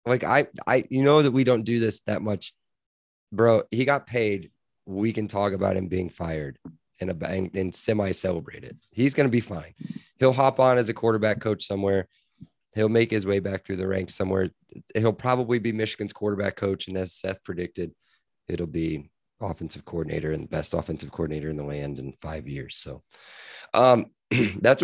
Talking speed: 190 wpm